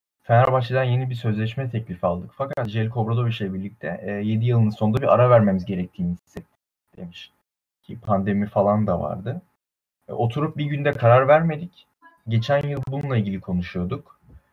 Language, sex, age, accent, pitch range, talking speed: Turkish, male, 30-49, native, 110-130 Hz, 140 wpm